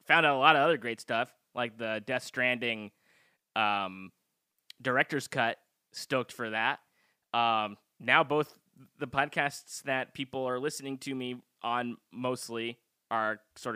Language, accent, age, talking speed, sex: English, American, 20-39, 145 wpm, male